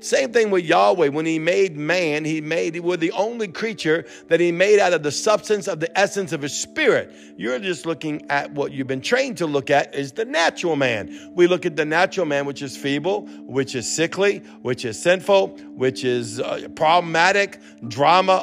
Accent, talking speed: American, 200 wpm